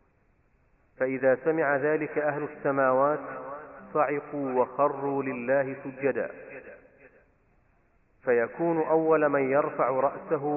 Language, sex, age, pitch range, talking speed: Arabic, male, 40-59, 125-145 Hz, 80 wpm